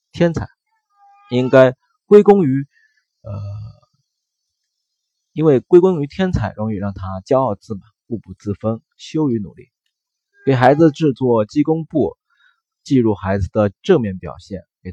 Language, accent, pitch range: Chinese, native, 95-145 Hz